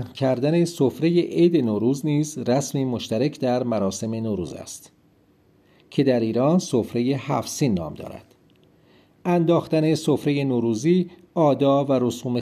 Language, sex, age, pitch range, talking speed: Persian, male, 40-59, 120-160 Hz, 115 wpm